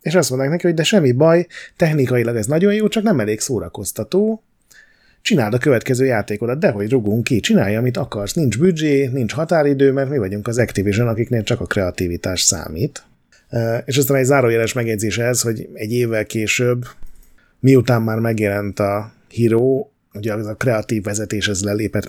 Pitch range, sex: 105-135 Hz, male